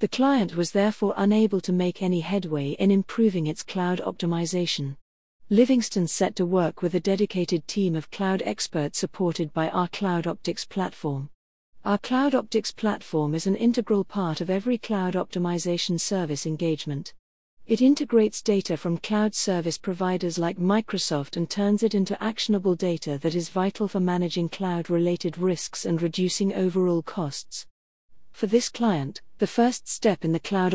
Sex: female